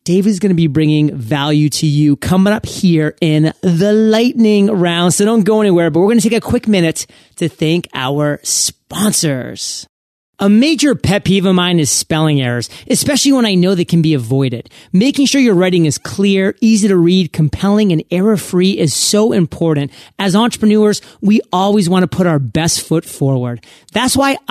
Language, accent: English, American